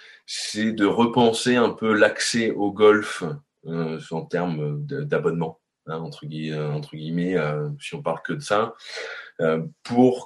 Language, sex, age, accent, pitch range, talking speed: French, male, 20-39, French, 85-115 Hz, 150 wpm